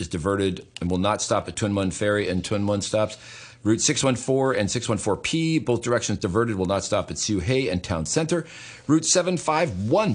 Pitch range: 90-135 Hz